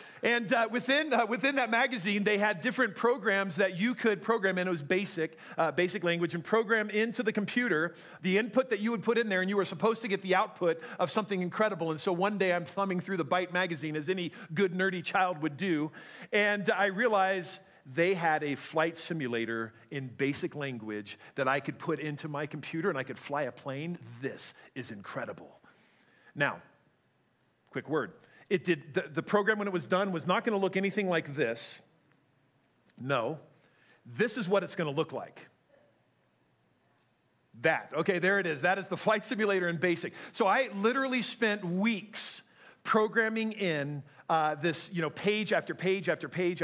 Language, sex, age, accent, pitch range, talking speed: English, male, 40-59, American, 160-210 Hz, 190 wpm